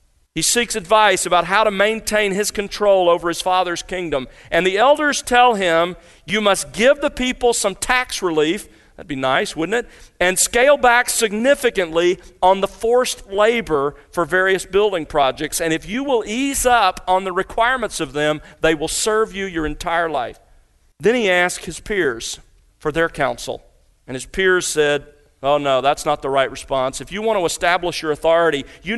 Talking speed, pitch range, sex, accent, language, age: 180 wpm, 150-210 Hz, male, American, English, 40-59